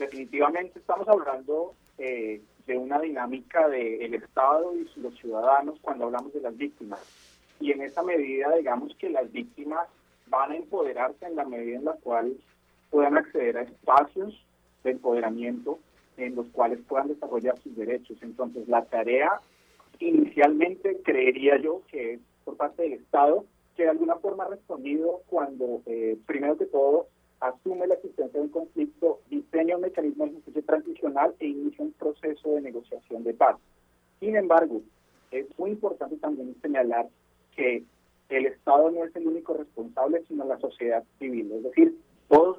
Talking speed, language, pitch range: 160 wpm, Spanish, 120-180 Hz